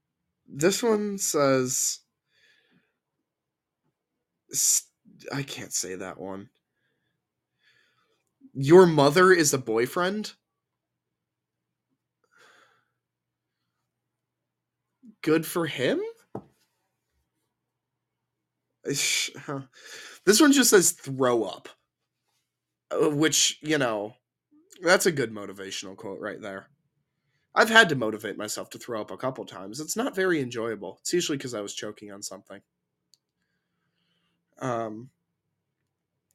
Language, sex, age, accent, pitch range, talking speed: English, male, 20-39, American, 115-185 Hz, 90 wpm